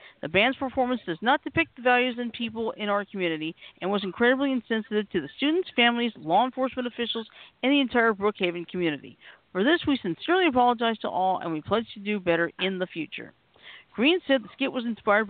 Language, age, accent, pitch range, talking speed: English, 50-69, American, 185-260 Hz, 200 wpm